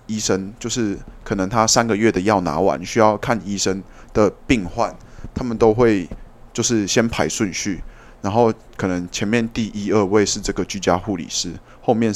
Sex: male